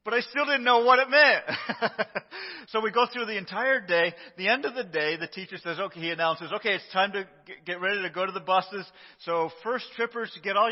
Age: 40-59